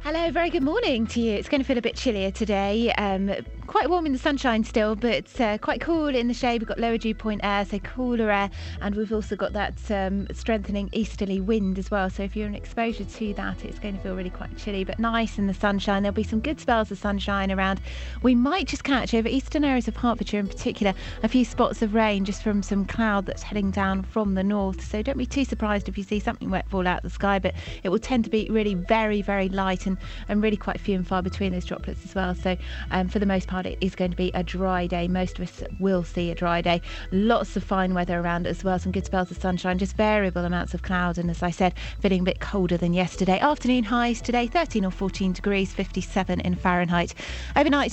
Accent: British